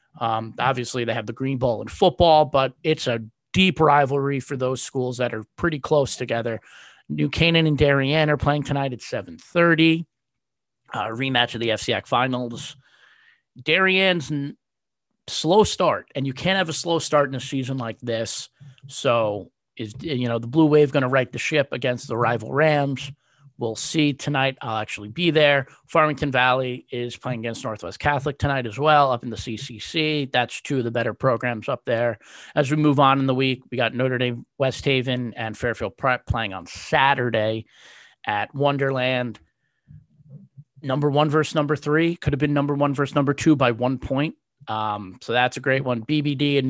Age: 30-49